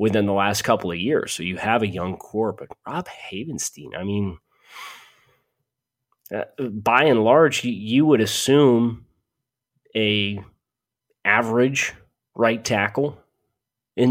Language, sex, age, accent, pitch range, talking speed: English, male, 30-49, American, 95-125 Hz, 130 wpm